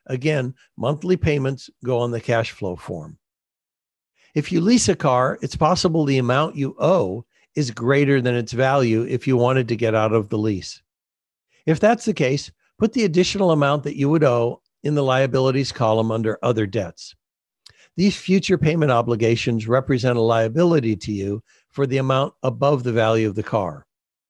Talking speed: 175 wpm